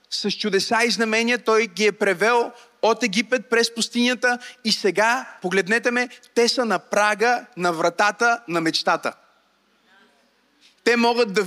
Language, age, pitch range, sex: Bulgarian, 30-49, 205-260 Hz, male